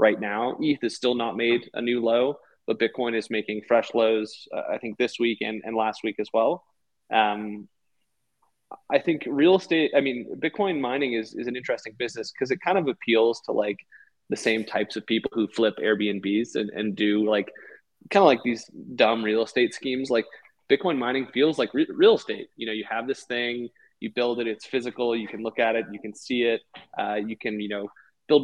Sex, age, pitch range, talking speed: male, 20-39, 110-130 Hz, 215 wpm